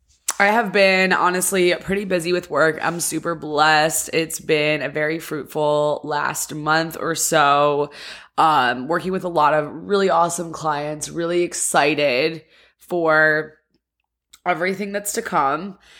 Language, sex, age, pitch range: English, female, 20-39, 155-195 Hz